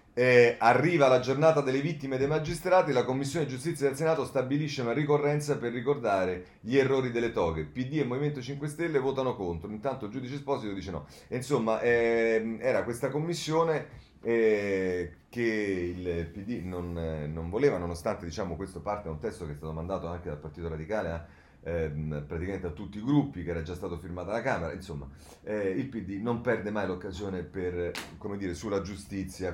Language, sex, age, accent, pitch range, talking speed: Italian, male, 30-49, native, 85-115 Hz, 175 wpm